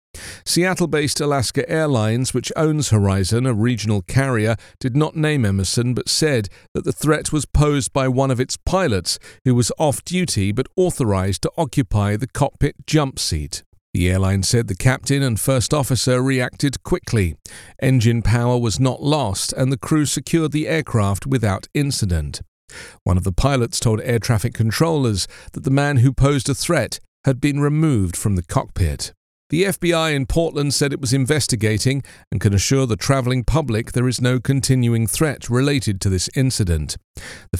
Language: English